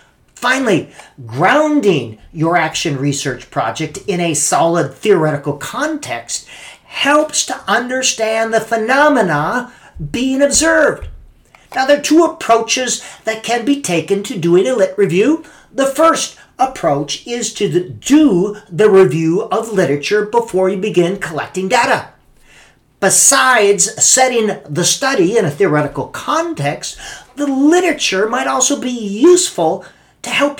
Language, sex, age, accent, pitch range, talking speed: English, male, 50-69, American, 180-250 Hz, 125 wpm